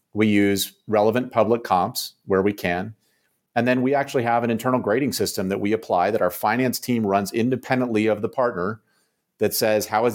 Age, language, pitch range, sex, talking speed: 40-59, English, 100-125 Hz, male, 195 wpm